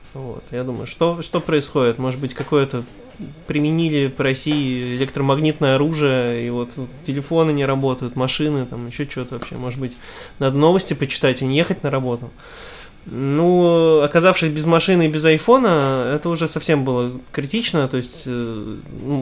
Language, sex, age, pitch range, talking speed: Russian, male, 20-39, 125-155 Hz, 160 wpm